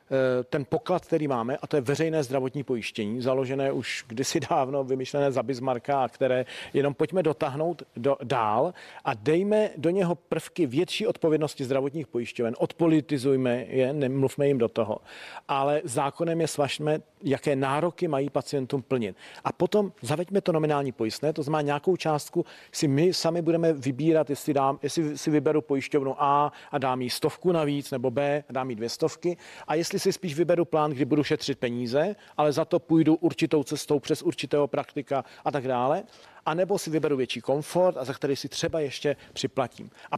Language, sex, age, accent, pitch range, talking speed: Czech, male, 40-59, native, 135-160 Hz, 175 wpm